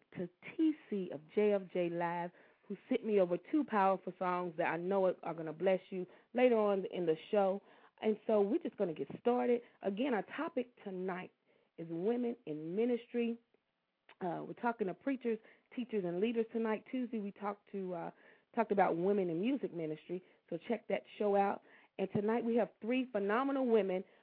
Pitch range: 185-235 Hz